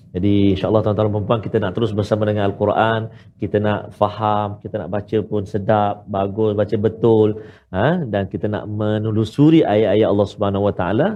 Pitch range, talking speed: 105-140 Hz, 170 wpm